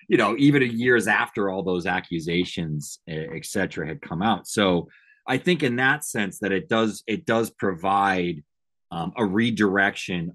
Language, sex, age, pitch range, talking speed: English, male, 30-49, 85-110 Hz, 160 wpm